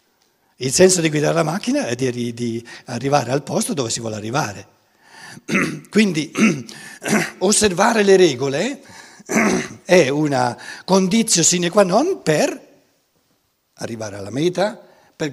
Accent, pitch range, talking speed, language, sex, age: native, 125-185 Hz, 115 wpm, Italian, male, 60-79